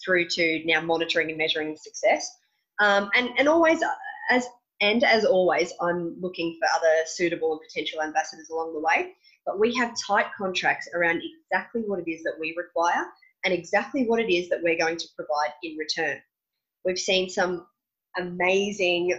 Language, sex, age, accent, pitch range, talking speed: English, female, 20-39, Australian, 165-220 Hz, 170 wpm